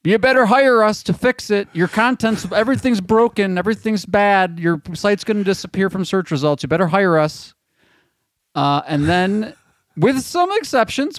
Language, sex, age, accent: English, male, 30-49, American